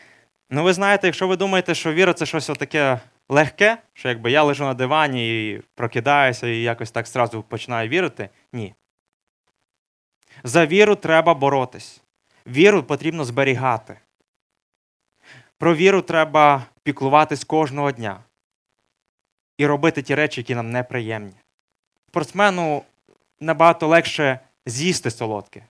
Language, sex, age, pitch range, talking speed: Ukrainian, male, 20-39, 115-155 Hz, 125 wpm